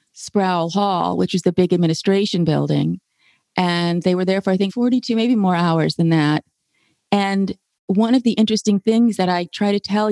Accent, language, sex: American, English, female